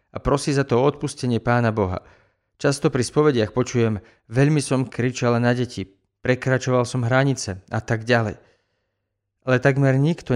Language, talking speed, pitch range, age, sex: Slovak, 145 wpm, 105-135 Hz, 40-59, male